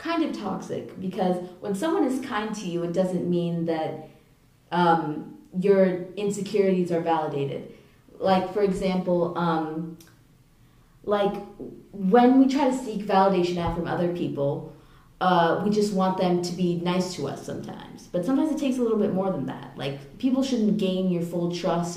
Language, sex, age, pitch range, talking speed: English, female, 20-39, 160-190 Hz, 170 wpm